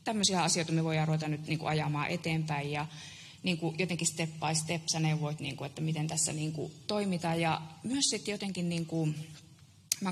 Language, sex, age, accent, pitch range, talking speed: Finnish, female, 20-39, native, 155-175 Hz, 195 wpm